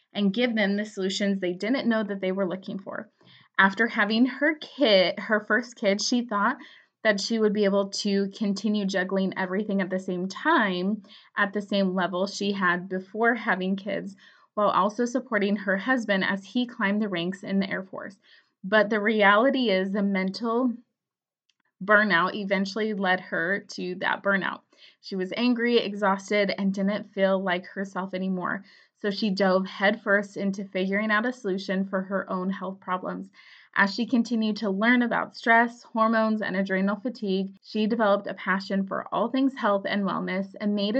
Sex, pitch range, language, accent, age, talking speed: female, 195-220 Hz, English, American, 20-39, 175 wpm